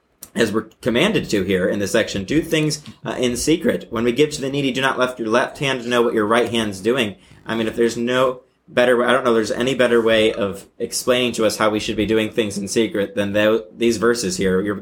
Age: 30-49